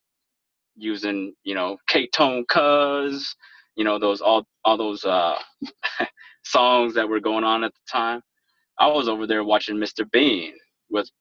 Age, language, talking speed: 20-39, English, 150 wpm